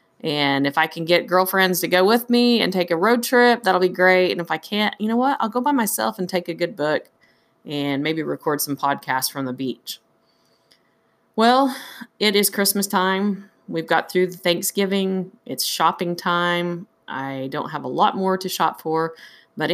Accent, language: American, English